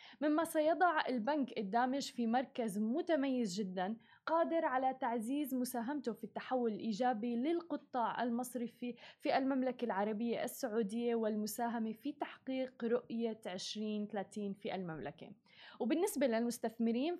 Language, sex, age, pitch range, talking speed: Arabic, female, 20-39, 220-275 Hz, 105 wpm